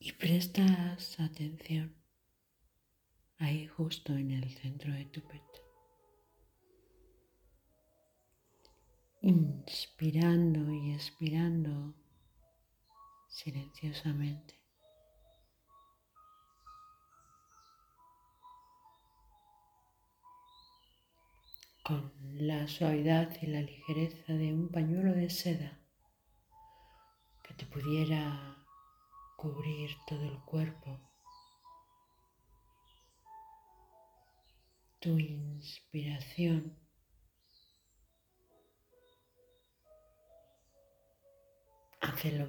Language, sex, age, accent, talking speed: Spanish, female, 40-59, Spanish, 50 wpm